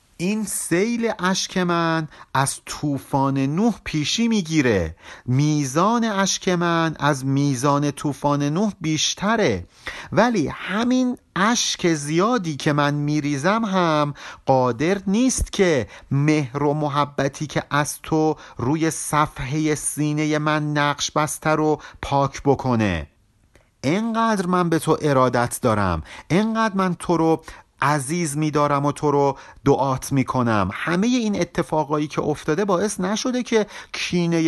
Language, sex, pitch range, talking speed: Persian, male, 135-180 Hz, 120 wpm